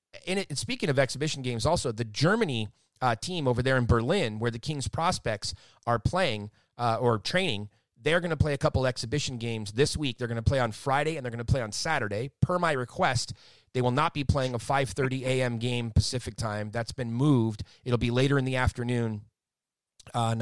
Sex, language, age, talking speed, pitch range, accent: male, English, 30-49, 205 wpm, 110-130 Hz, American